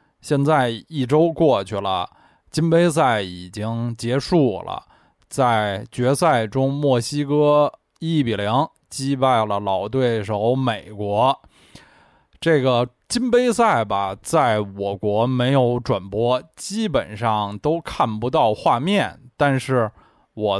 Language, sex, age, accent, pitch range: Chinese, male, 20-39, native, 105-150 Hz